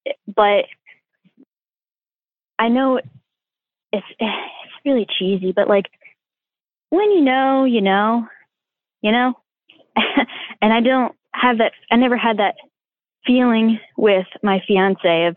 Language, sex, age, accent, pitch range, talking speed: English, female, 20-39, American, 185-235 Hz, 115 wpm